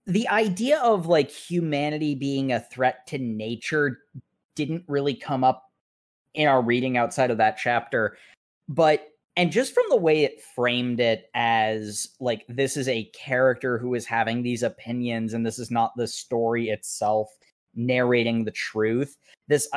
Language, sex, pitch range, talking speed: English, male, 120-155 Hz, 160 wpm